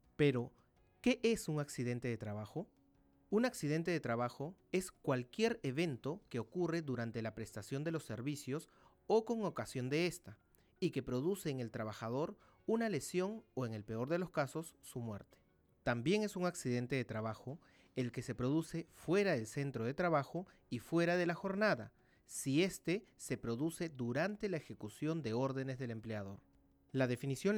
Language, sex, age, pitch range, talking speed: Spanish, male, 30-49, 120-170 Hz, 170 wpm